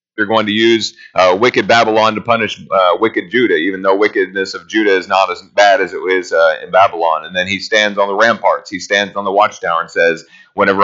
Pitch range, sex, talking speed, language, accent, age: 110-165 Hz, male, 235 wpm, English, American, 30-49